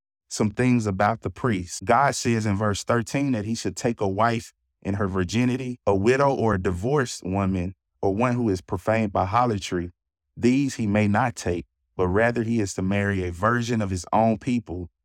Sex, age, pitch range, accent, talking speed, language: male, 30-49, 95-120 Hz, American, 195 wpm, English